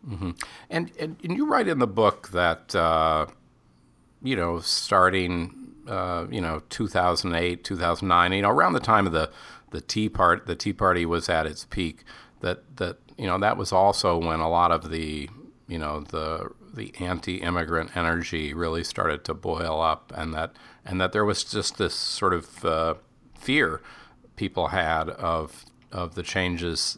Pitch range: 80-95 Hz